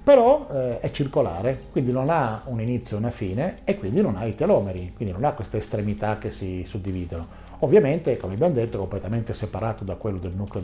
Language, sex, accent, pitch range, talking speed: Italian, male, native, 100-135 Hz, 210 wpm